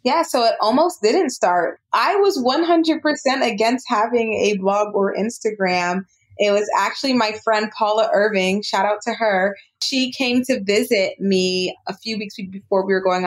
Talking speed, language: 170 wpm, English